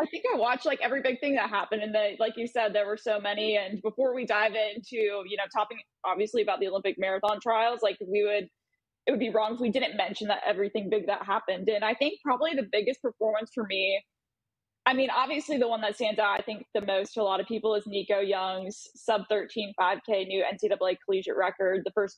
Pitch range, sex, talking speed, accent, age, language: 200-245 Hz, female, 235 wpm, American, 20-39, English